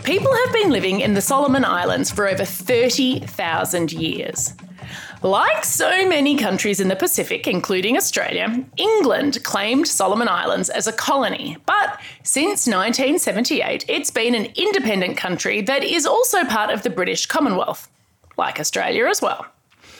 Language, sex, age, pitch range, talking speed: English, female, 30-49, 215-360 Hz, 145 wpm